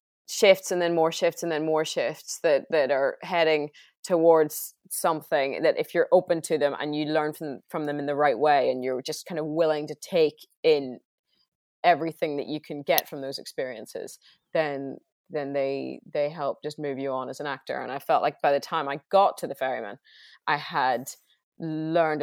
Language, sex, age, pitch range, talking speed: English, female, 20-39, 140-170 Hz, 205 wpm